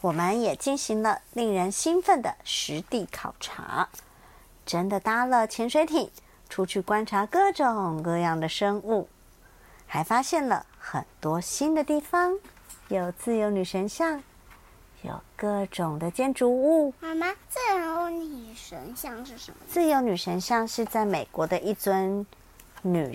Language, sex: Chinese, male